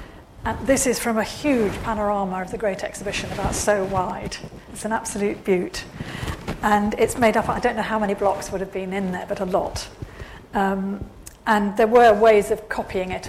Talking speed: 200 wpm